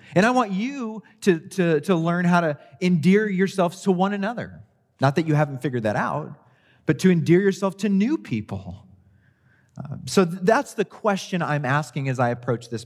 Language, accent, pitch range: English, American, 105-170 Hz